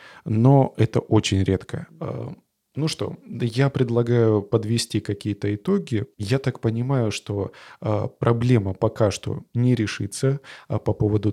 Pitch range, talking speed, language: 105-125 Hz, 115 wpm, Russian